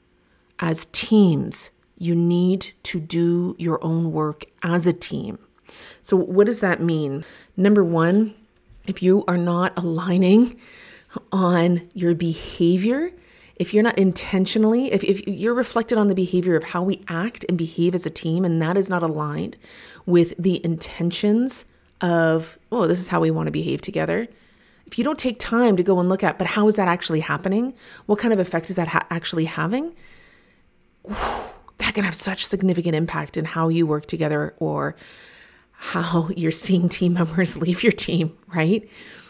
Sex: female